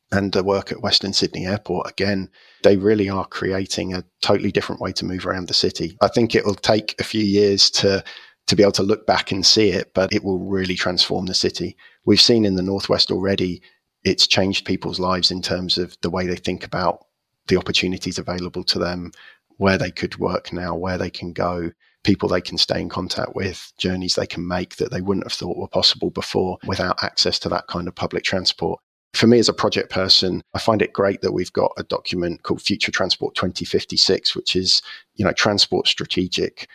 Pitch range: 90-100 Hz